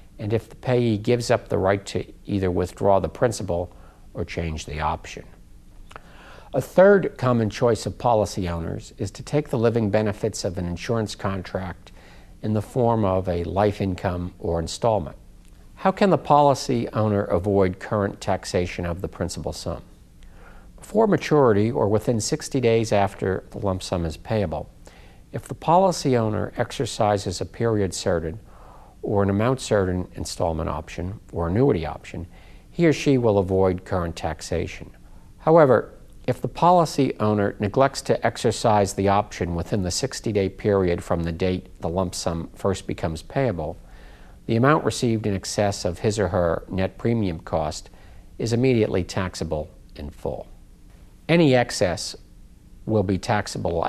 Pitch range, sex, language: 90-115 Hz, male, English